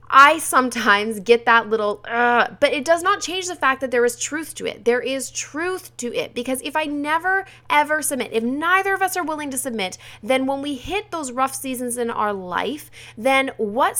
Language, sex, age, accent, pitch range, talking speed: English, female, 20-39, American, 205-270 Hz, 215 wpm